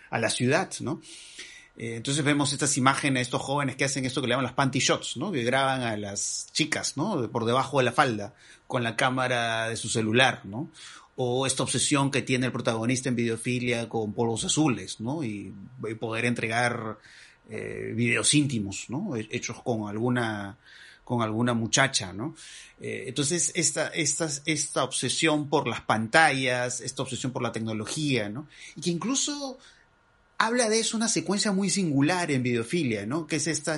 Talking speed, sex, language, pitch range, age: 180 wpm, male, Spanish, 120-150 Hz, 30-49